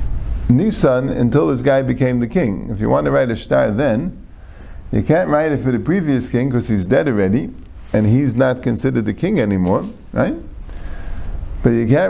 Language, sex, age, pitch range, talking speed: English, male, 50-69, 80-135 Hz, 190 wpm